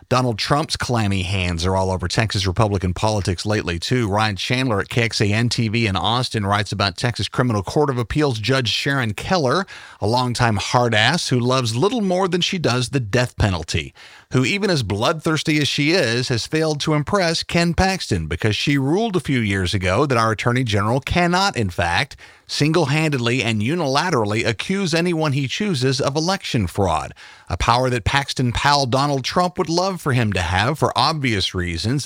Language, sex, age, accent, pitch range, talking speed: English, male, 40-59, American, 105-145 Hz, 180 wpm